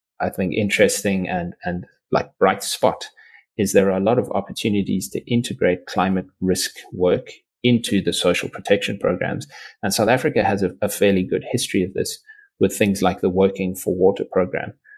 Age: 30-49